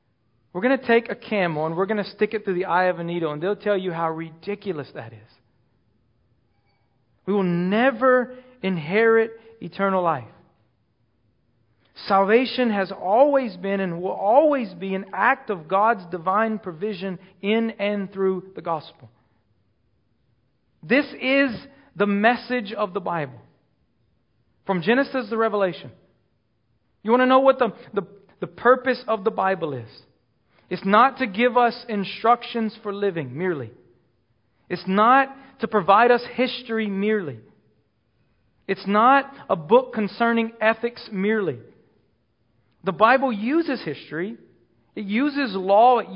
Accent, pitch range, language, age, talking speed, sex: American, 150-225 Hz, English, 40-59, 135 wpm, male